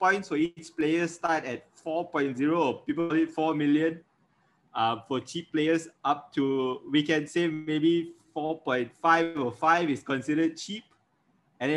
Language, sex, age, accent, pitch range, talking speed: English, male, 20-39, Malaysian, 135-165 Hz, 140 wpm